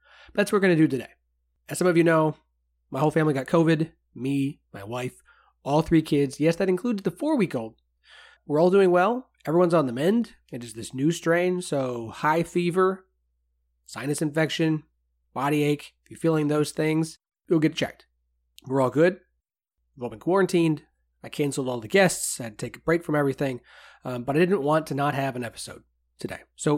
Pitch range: 125-170 Hz